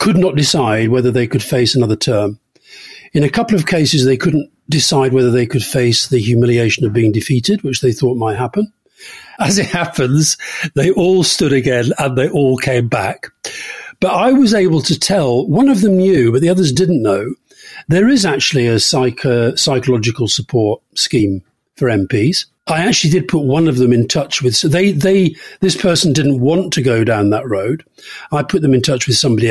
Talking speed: 195 wpm